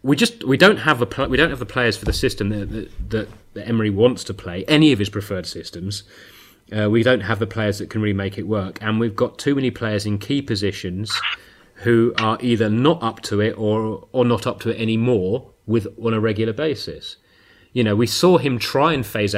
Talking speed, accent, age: 230 wpm, British, 30-49